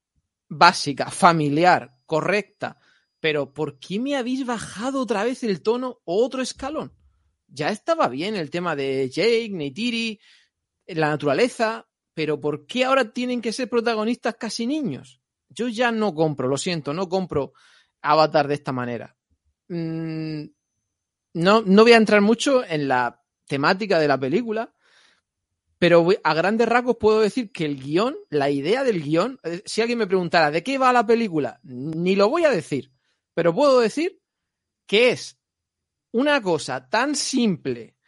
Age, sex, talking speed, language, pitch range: 40-59, male, 150 wpm, Spanish, 145-240 Hz